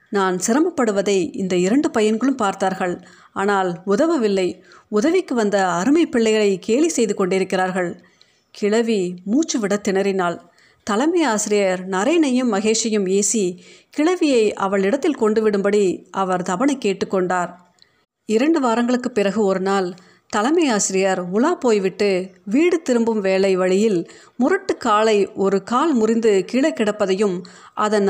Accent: native